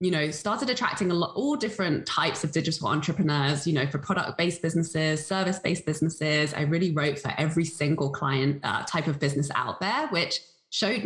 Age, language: 20-39, English